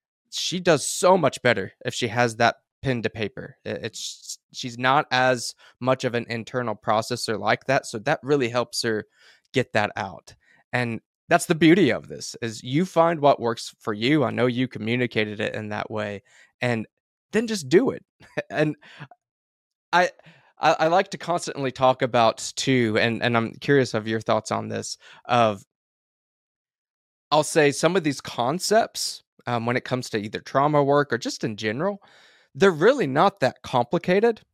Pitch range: 115-165 Hz